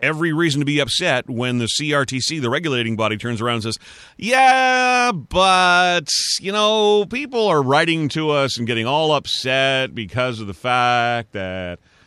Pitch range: 115-175 Hz